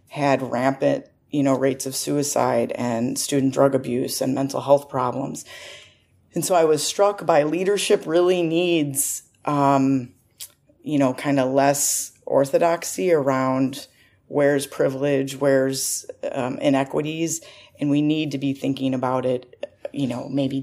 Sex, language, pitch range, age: female, English, 135-160 Hz, 30-49